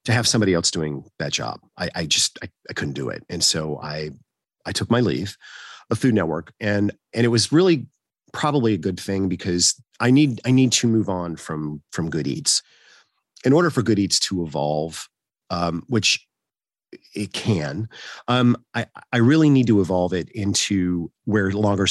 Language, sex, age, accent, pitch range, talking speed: English, male, 40-59, American, 90-115 Hz, 185 wpm